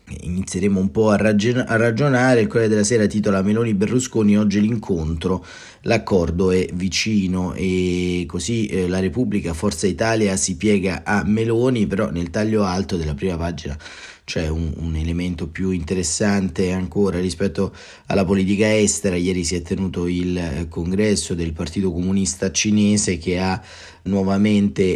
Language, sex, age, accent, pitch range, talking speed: Italian, male, 30-49, native, 90-105 Hz, 140 wpm